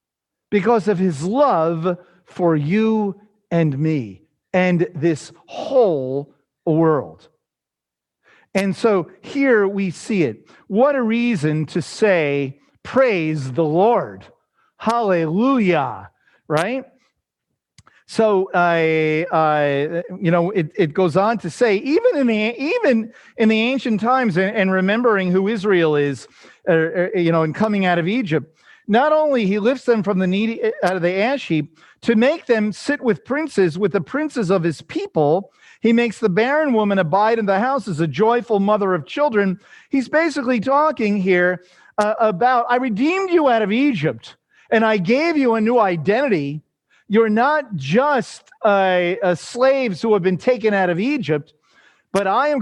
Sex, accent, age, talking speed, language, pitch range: male, American, 50-69, 155 wpm, English, 175-240 Hz